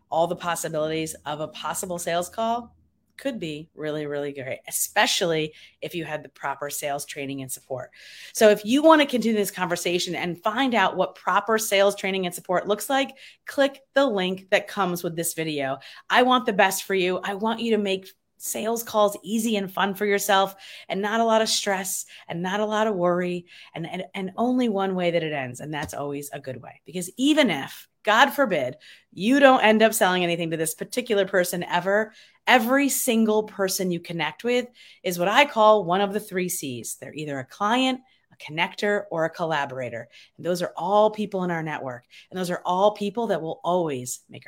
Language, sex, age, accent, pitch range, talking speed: English, female, 30-49, American, 170-235 Hz, 205 wpm